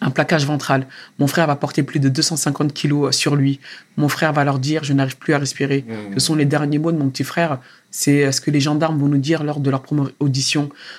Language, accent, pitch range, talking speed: French, French, 140-155 Hz, 245 wpm